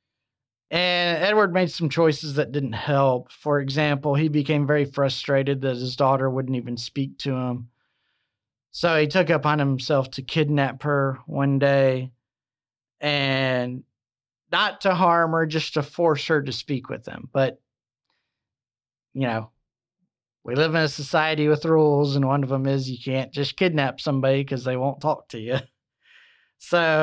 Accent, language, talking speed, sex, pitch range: American, English, 160 wpm, male, 130-150 Hz